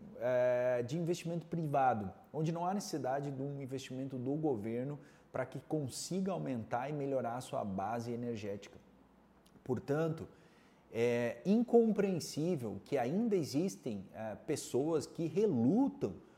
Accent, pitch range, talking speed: Brazilian, 115-165 Hz, 115 wpm